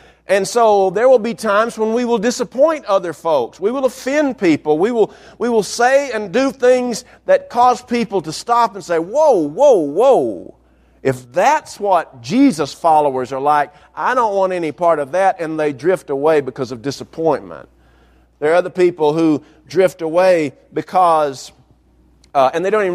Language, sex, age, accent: English, male, 50-69, American